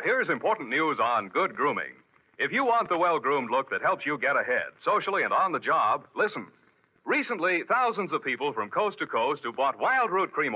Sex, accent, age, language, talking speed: male, American, 60-79, English, 205 wpm